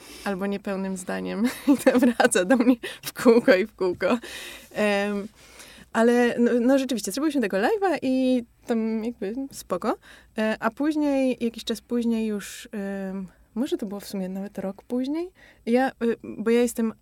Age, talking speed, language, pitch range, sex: 20-39, 160 wpm, Polish, 195-240 Hz, female